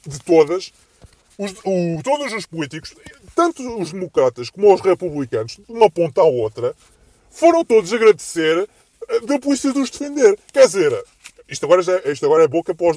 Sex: female